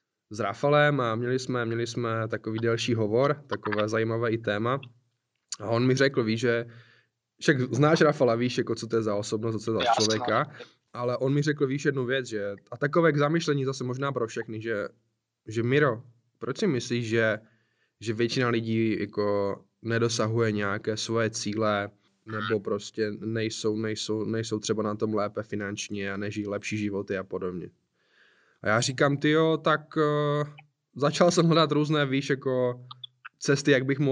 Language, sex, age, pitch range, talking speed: Czech, male, 20-39, 110-135 Hz, 170 wpm